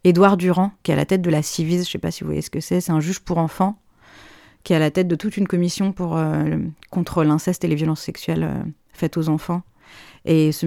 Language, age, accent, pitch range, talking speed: French, 30-49, French, 160-185 Hz, 265 wpm